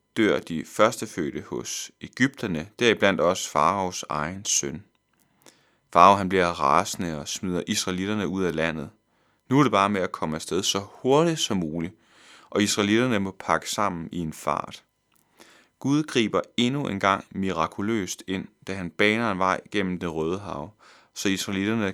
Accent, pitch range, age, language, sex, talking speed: native, 90-110 Hz, 30-49, Danish, male, 160 wpm